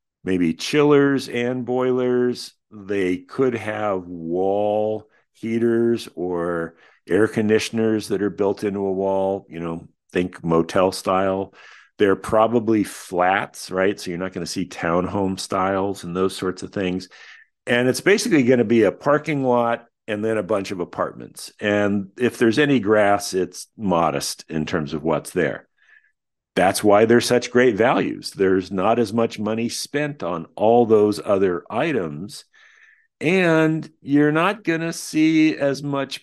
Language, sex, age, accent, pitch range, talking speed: English, male, 50-69, American, 95-135 Hz, 150 wpm